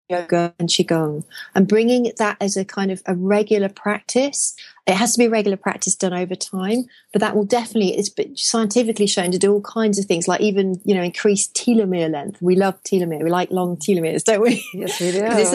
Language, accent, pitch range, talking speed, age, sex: English, British, 190-230 Hz, 215 wpm, 30-49, female